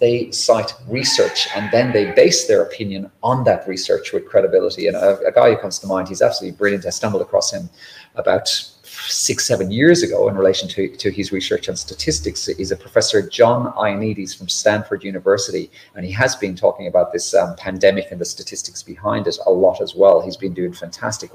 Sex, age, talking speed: male, 30-49, 200 wpm